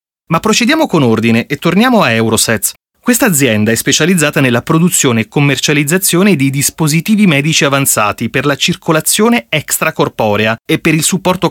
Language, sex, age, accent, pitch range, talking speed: Italian, male, 30-49, native, 125-185 Hz, 145 wpm